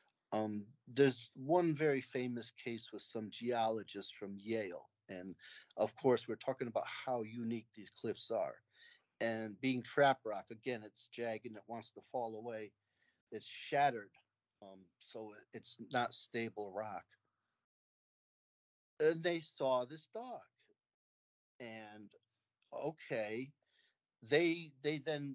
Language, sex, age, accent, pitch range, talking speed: English, male, 40-59, American, 110-145 Hz, 125 wpm